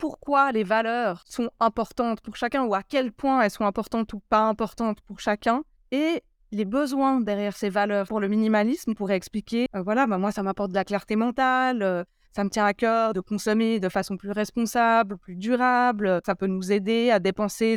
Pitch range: 205-245 Hz